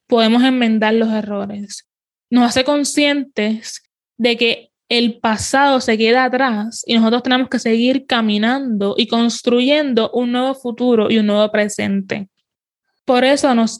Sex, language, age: female, Spanish, 20-39